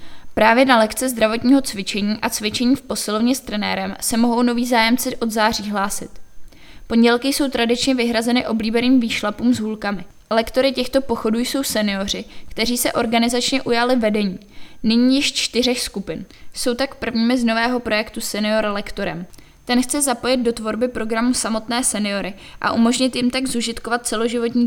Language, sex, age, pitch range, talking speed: Czech, female, 20-39, 220-250 Hz, 150 wpm